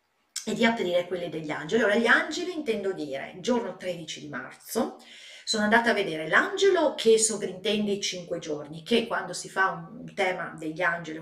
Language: Italian